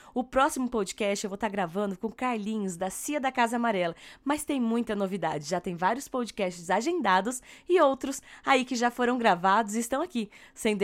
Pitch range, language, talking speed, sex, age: 195-250 Hz, Portuguese, 190 wpm, female, 20-39